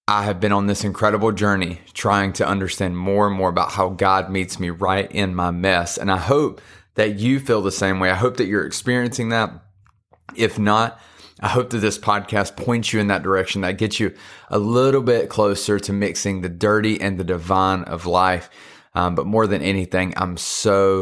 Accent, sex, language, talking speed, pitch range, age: American, male, English, 205 wpm, 90-100 Hz, 30-49